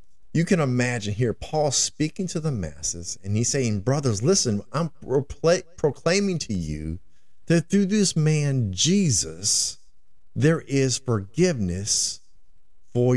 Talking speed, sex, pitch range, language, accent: 125 wpm, male, 100-150 Hz, English, American